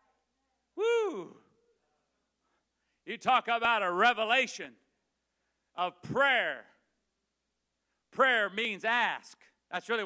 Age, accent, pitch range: 50-69, American, 205-250 Hz